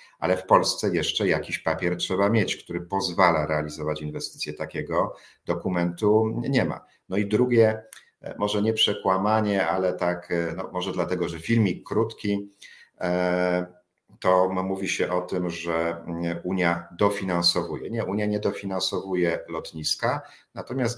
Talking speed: 125 wpm